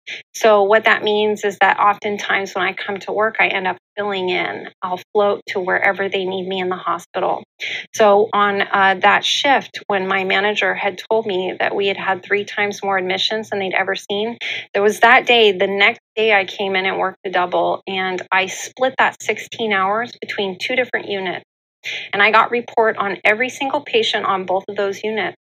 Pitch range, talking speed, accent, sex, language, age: 190-220 Hz, 205 wpm, American, female, English, 30-49